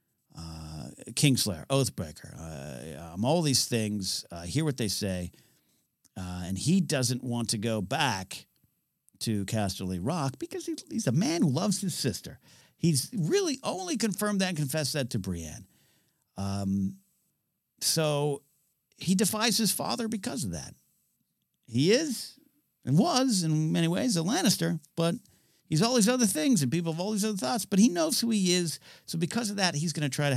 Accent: American